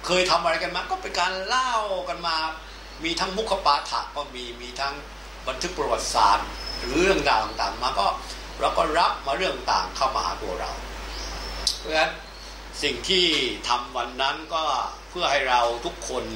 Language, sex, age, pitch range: Thai, male, 60-79, 130-170 Hz